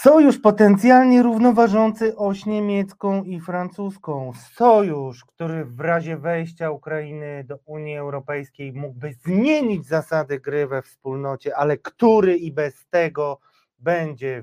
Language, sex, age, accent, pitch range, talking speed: Polish, male, 30-49, native, 145-195 Hz, 115 wpm